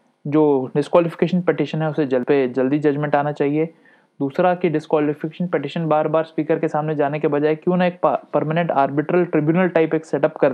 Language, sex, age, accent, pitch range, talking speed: Hindi, male, 20-39, native, 140-170 Hz, 195 wpm